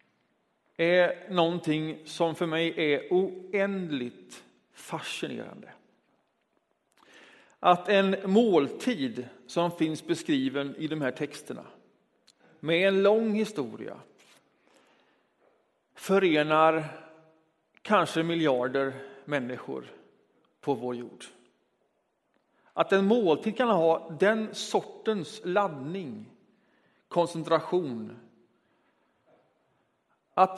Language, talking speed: Swedish, 75 wpm